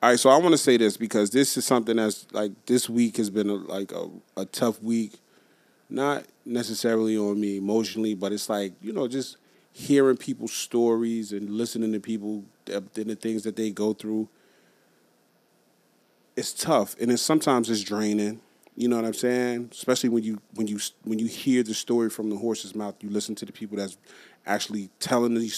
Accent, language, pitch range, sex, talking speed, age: American, English, 105-120 Hz, male, 195 wpm, 30-49